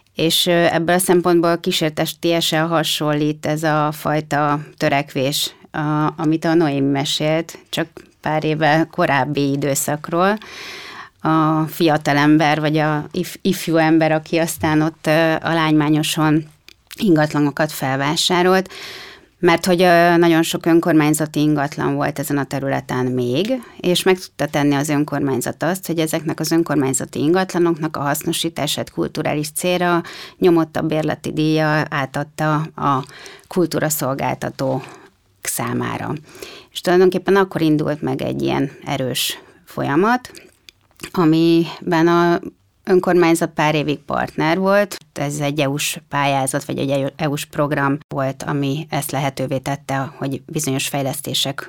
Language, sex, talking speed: Hungarian, female, 115 wpm